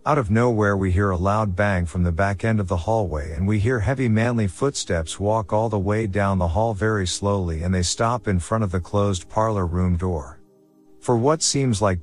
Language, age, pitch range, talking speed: English, 50-69, 90-110 Hz, 225 wpm